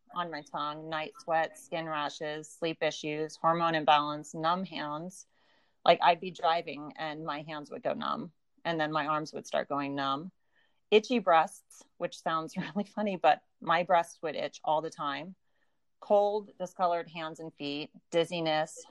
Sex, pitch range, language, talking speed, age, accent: female, 150-175 Hz, English, 160 wpm, 30-49, American